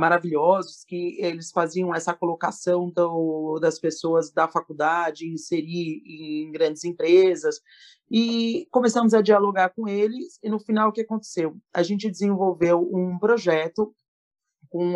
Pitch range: 160-200 Hz